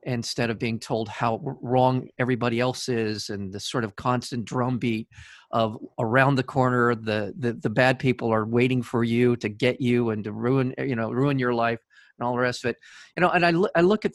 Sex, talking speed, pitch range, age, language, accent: male, 220 wpm, 115-130 Hz, 40-59, English, American